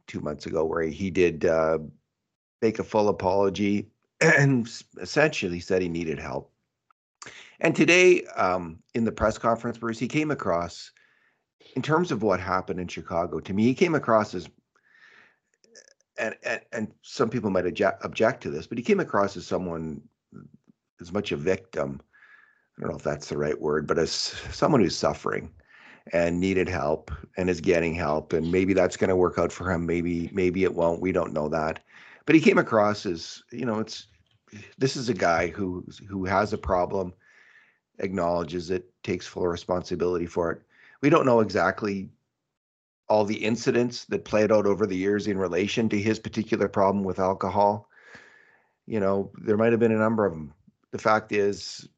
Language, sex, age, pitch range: English, male, 50-69, 90-110 Hz